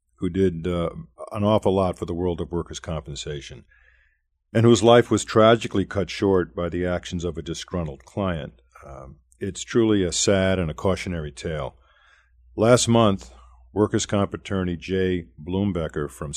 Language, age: English, 50-69